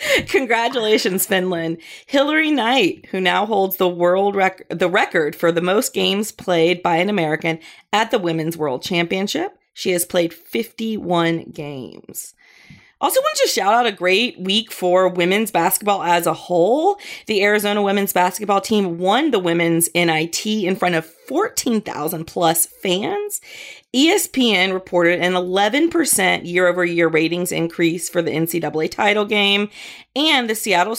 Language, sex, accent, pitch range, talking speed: English, female, American, 170-220 Hz, 145 wpm